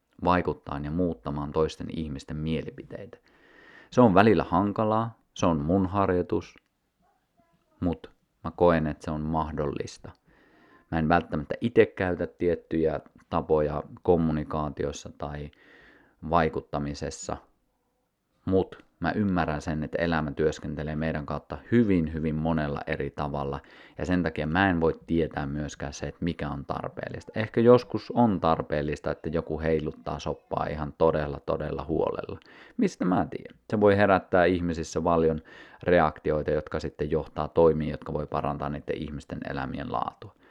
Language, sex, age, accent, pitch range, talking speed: Finnish, male, 30-49, native, 75-90 Hz, 135 wpm